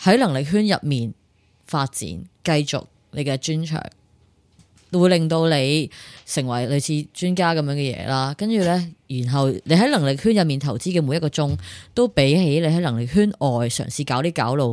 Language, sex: Chinese, female